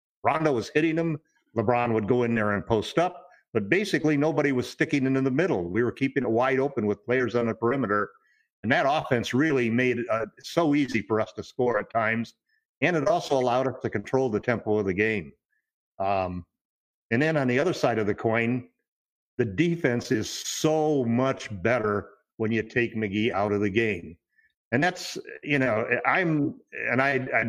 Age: 50-69